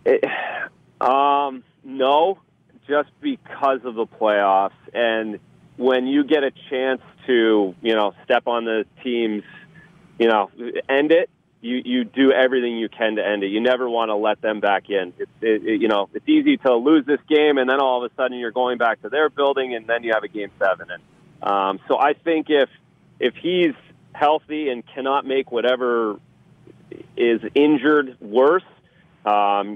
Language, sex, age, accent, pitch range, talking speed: English, male, 30-49, American, 110-150 Hz, 180 wpm